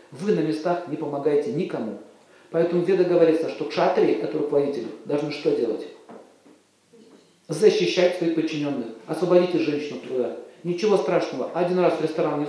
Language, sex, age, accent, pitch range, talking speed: Russian, male, 40-59, native, 160-230 Hz, 140 wpm